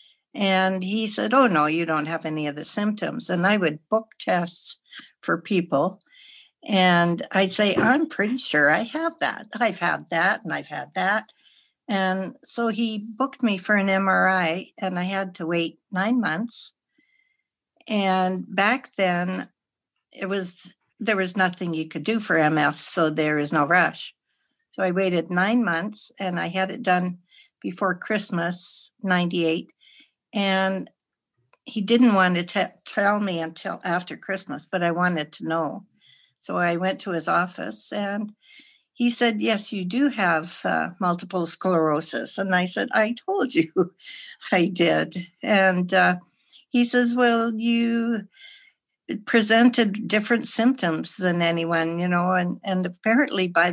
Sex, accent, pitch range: female, American, 170-220 Hz